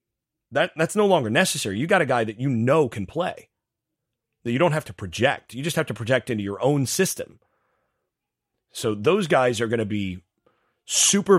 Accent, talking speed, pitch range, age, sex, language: American, 190 wpm, 110-150 Hz, 30-49, male, English